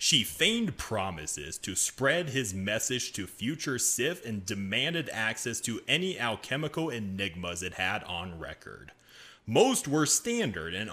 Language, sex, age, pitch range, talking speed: English, male, 30-49, 105-160 Hz, 135 wpm